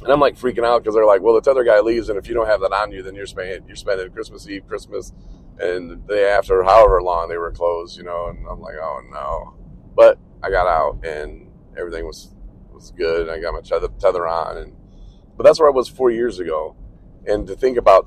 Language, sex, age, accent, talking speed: English, male, 40-59, American, 240 wpm